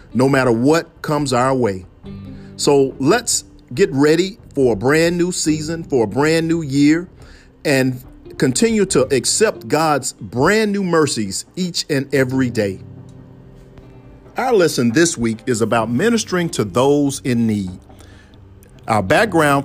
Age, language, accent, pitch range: 50-69, English, American, 115-160 Hz